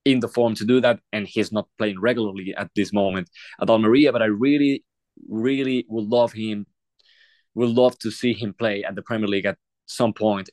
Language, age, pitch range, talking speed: English, 20-39, 105-125 Hz, 205 wpm